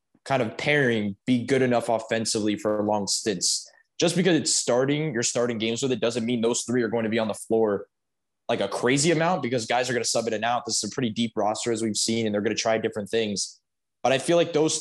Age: 10-29